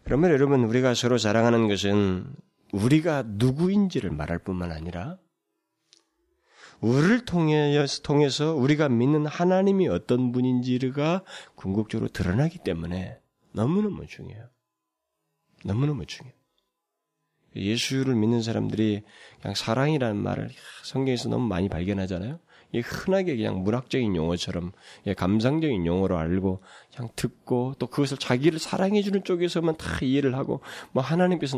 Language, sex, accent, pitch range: Korean, male, native, 100-150 Hz